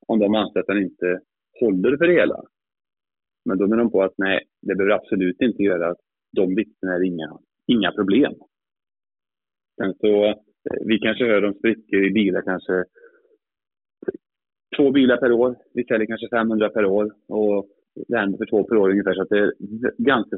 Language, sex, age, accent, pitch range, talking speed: Swedish, male, 30-49, Norwegian, 95-115 Hz, 170 wpm